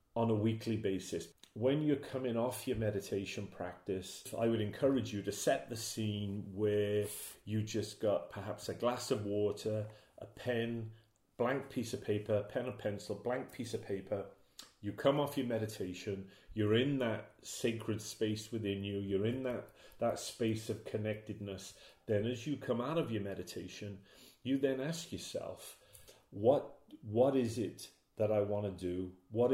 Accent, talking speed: British, 165 wpm